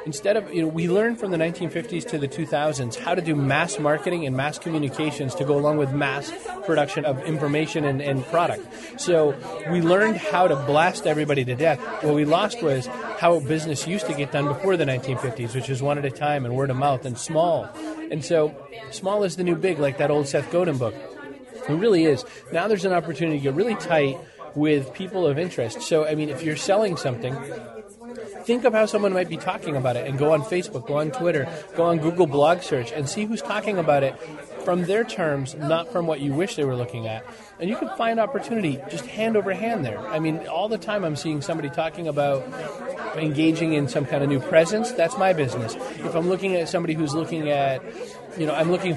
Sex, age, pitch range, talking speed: male, 30-49, 140-175 Hz, 220 wpm